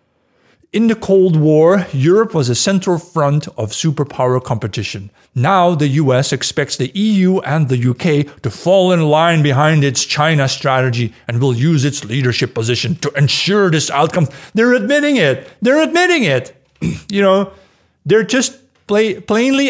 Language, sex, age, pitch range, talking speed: English, male, 50-69, 130-185 Hz, 155 wpm